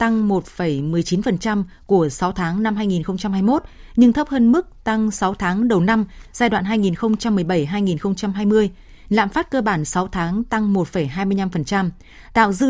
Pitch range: 185-235 Hz